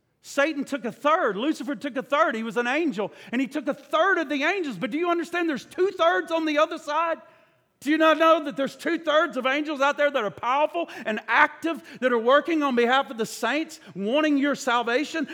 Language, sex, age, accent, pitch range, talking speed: English, male, 50-69, American, 240-295 Hz, 225 wpm